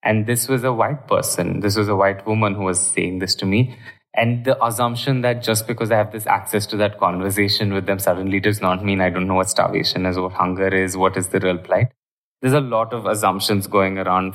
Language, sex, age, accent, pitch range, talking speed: English, male, 20-39, Indian, 95-110 Hz, 240 wpm